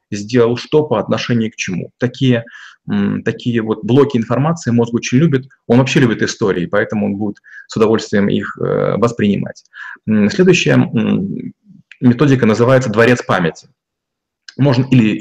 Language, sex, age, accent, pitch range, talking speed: Russian, male, 30-49, native, 115-135 Hz, 120 wpm